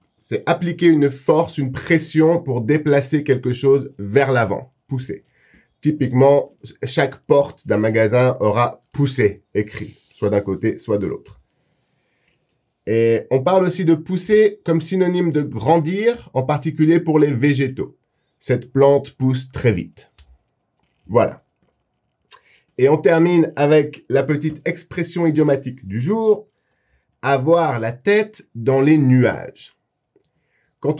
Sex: male